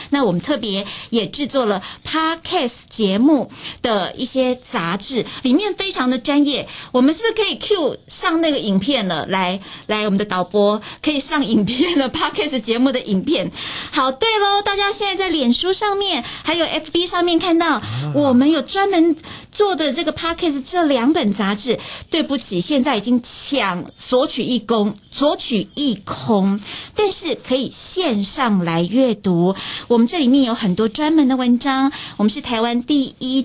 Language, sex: Chinese, female